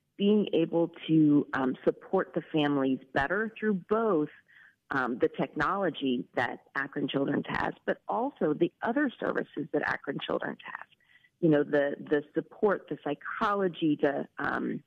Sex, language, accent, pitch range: female, English, American, 145-195 Hz